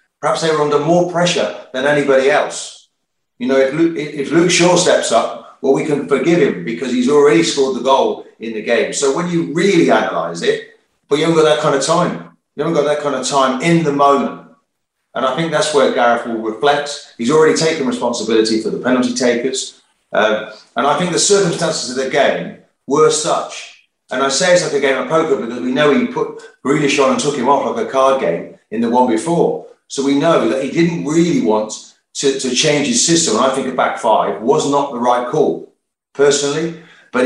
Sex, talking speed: male, 220 wpm